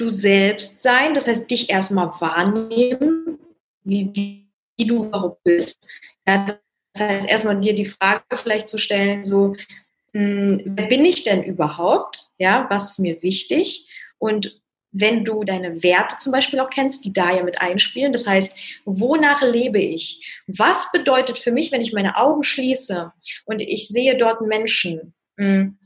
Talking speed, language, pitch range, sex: 155 wpm, German, 195-255 Hz, female